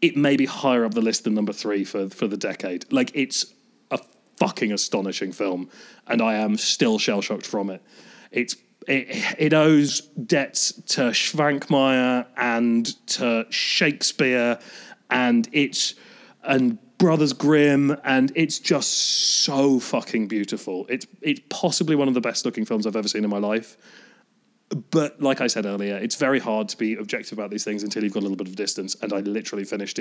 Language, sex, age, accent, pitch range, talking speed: English, male, 30-49, British, 110-150 Hz, 175 wpm